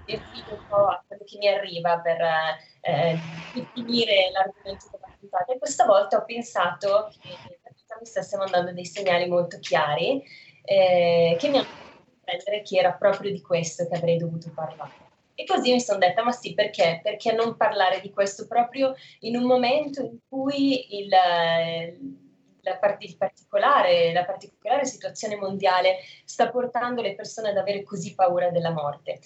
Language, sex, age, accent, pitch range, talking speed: Italian, female, 20-39, native, 175-225 Hz, 155 wpm